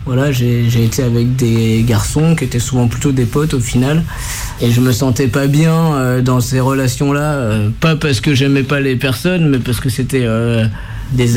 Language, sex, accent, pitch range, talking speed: French, male, French, 120-145 Hz, 210 wpm